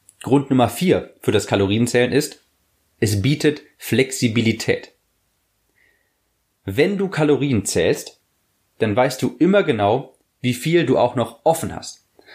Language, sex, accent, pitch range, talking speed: German, male, German, 105-140 Hz, 125 wpm